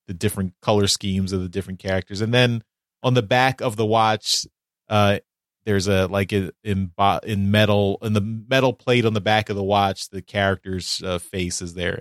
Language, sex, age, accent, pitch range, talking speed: English, male, 30-49, American, 95-125 Hz, 200 wpm